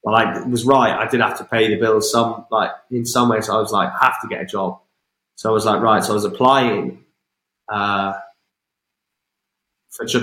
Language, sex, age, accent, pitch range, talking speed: English, male, 20-39, British, 110-140 Hz, 230 wpm